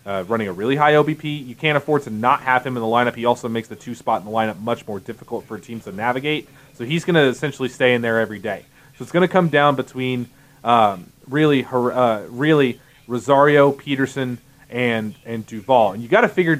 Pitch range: 125-155 Hz